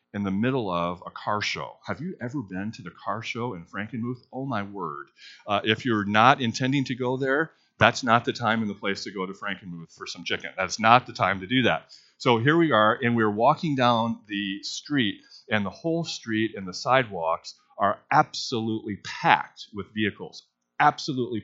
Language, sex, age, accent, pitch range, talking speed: English, male, 40-59, American, 100-120 Hz, 200 wpm